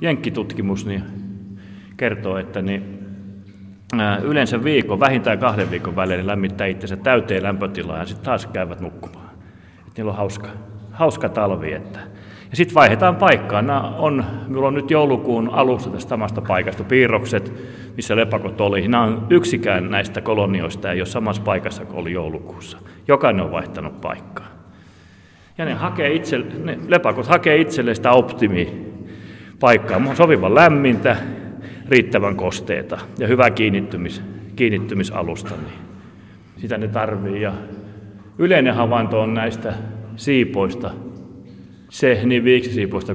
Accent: native